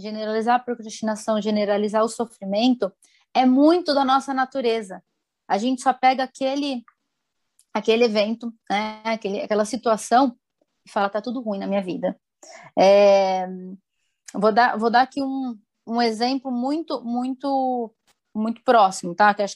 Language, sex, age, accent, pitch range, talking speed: Portuguese, female, 20-39, Brazilian, 220-265 Hz, 140 wpm